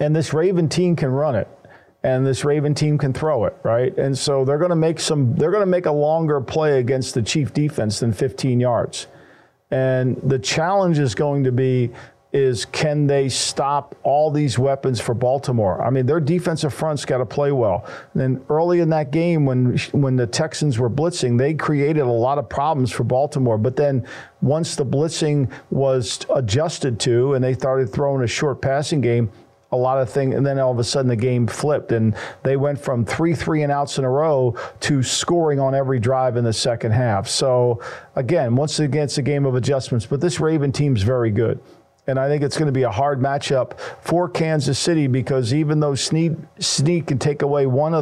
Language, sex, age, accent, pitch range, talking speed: English, male, 50-69, American, 130-155 Hz, 210 wpm